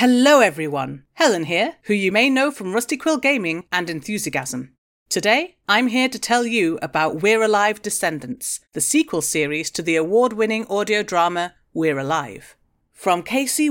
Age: 40-59